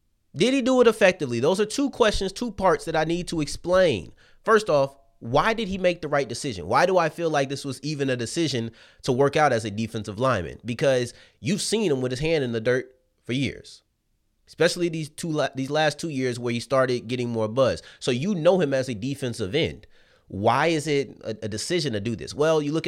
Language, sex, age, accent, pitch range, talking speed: English, male, 30-49, American, 100-145 Hz, 230 wpm